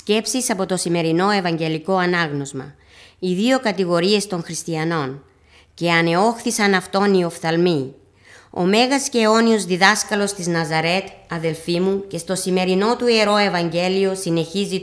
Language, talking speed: Greek, 130 wpm